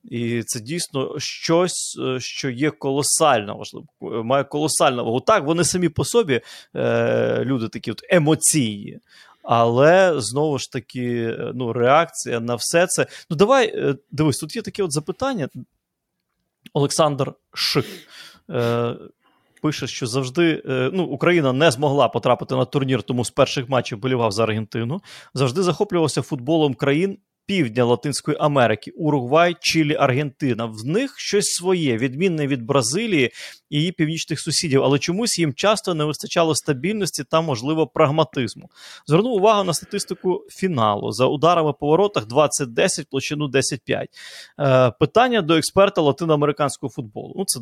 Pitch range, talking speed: 130-175 Hz, 140 wpm